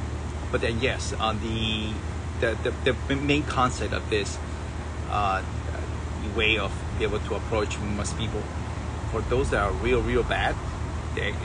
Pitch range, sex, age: 80-100 Hz, male, 30-49